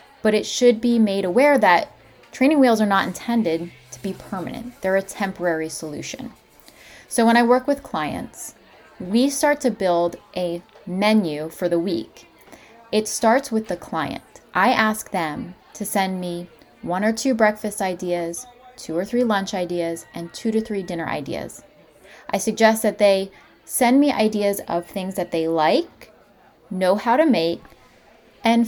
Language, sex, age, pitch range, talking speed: English, female, 20-39, 175-225 Hz, 165 wpm